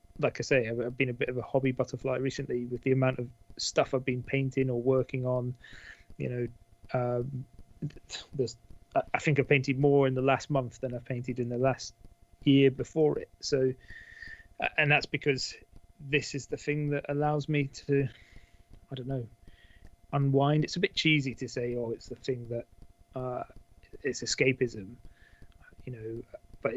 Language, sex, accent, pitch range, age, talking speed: English, male, British, 120-140 Hz, 30-49, 175 wpm